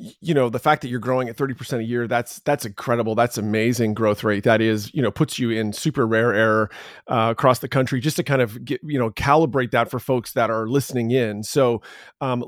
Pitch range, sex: 120-175 Hz, male